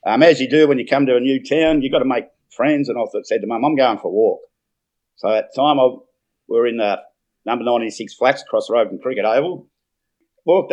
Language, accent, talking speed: English, Australian, 245 wpm